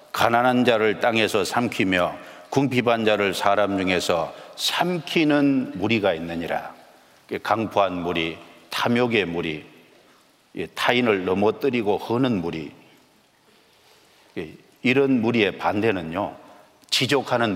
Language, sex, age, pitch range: Korean, male, 50-69, 100-140 Hz